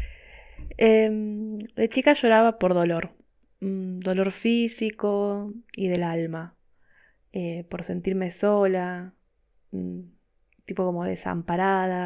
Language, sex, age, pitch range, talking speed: Spanish, female, 20-39, 180-205 Hz, 90 wpm